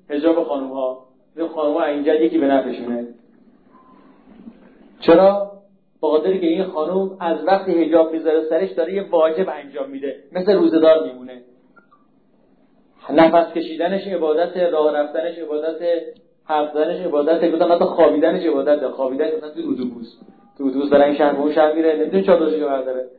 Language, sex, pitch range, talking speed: Persian, male, 145-195 Hz, 150 wpm